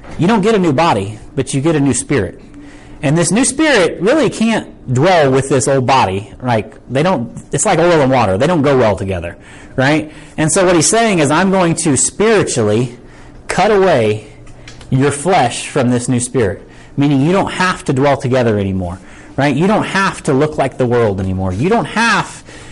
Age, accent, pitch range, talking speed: 30-49, American, 125-160 Hz, 205 wpm